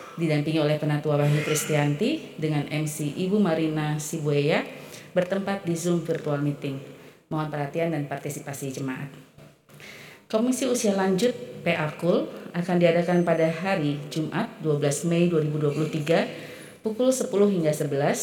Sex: female